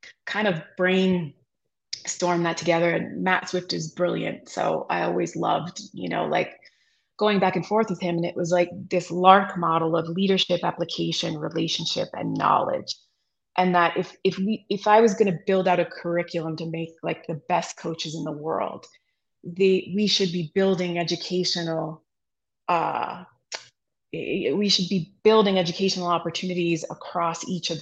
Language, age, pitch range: English, 20-39, 170-190 Hz